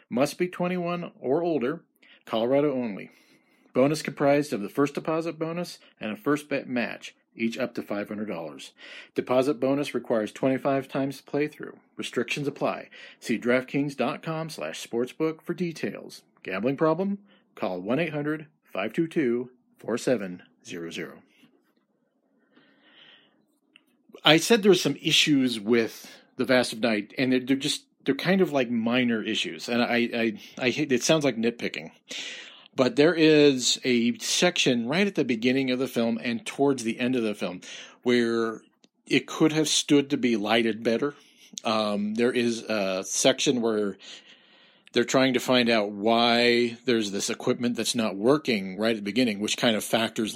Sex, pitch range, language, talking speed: male, 115-150 Hz, English, 150 wpm